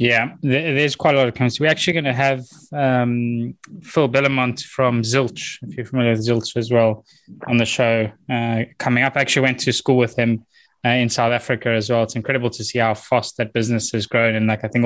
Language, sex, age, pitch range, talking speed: English, male, 20-39, 115-135 Hz, 230 wpm